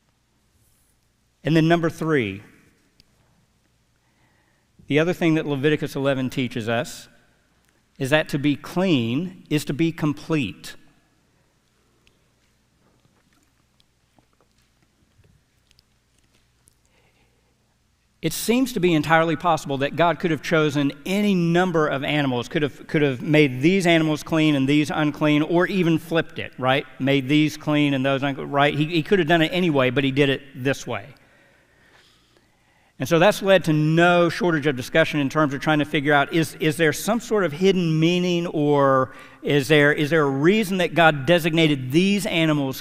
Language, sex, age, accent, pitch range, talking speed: English, male, 50-69, American, 140-165 Hz, 150 wpm